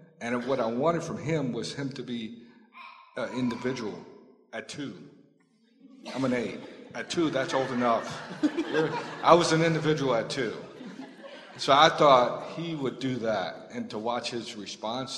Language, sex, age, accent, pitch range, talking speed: English, male, 50-69, American, 120-155 Hz, 160 wpm